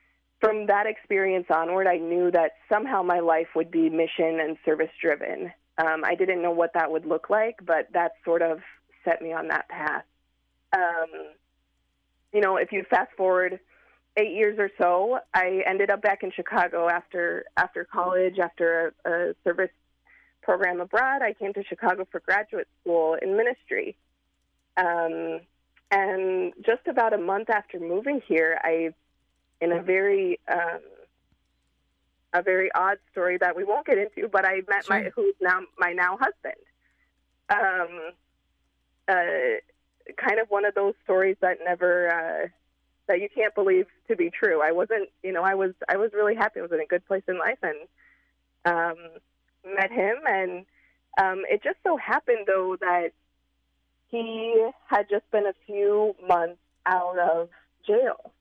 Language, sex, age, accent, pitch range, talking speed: English, female, 20-39, American, 170-210 Hz, 160 wpm